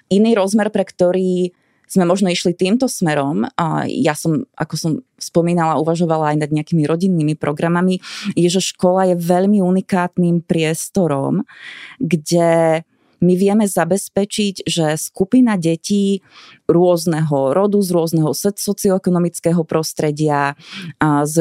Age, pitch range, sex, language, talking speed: 20-39, 150-180 Hz, female, Slovak, 120 wpm